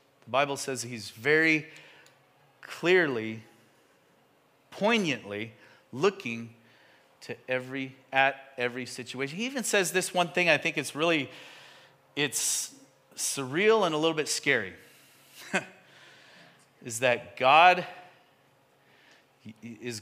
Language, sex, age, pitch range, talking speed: English, male, 40-59, 120-185 Hz, 100 wpm